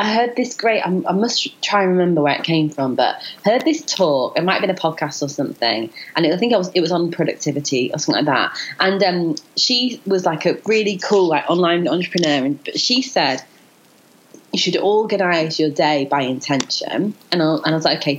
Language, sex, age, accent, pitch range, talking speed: English, female, 30-49, British, 145-195 Hz, 200 wpm